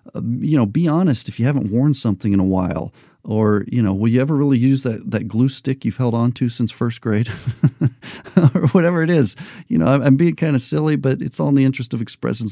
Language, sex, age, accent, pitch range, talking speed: English, male, 40-59, American, 105-135 Hz, 250 wpm